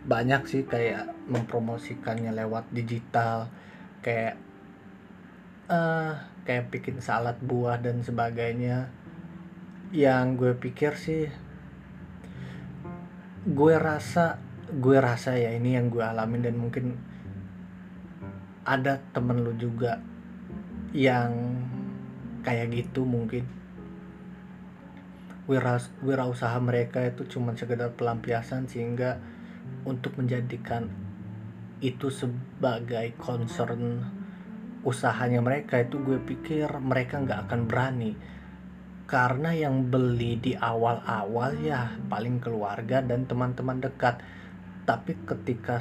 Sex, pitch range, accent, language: male, 115-145 Hz, native, Indonesian